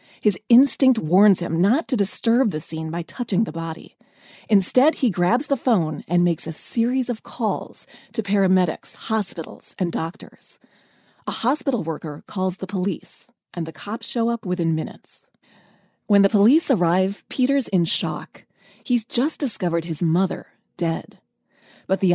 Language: English